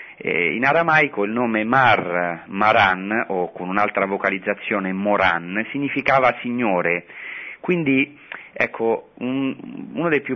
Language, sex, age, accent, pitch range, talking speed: Italian, male, 40-59, native, 95-125 Hz, 110 wpm